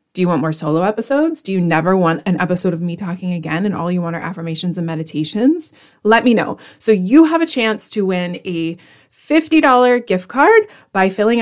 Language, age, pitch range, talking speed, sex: English, 30-49, 180-235 Hz, 210 wpm, female